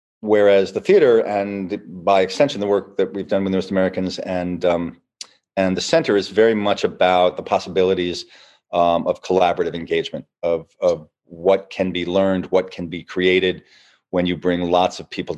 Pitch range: 85-100 Hz